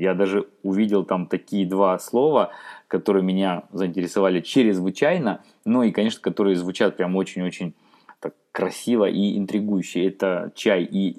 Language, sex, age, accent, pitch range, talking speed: Russian, male, 20-39, native, 95-110 Hz, 140 wpm